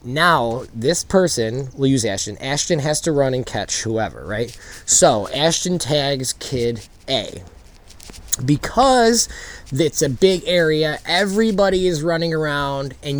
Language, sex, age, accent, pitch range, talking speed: English, male, 20-39, American, 125-190 Hz, 130 wpm